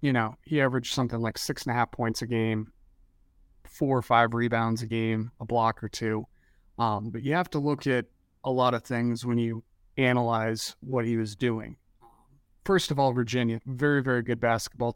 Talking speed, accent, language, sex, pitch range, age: 195 wpm, American, English, male, 110-130 Hz, 30-49